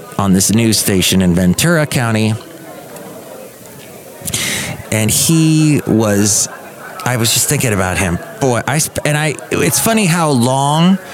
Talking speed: 135 wpm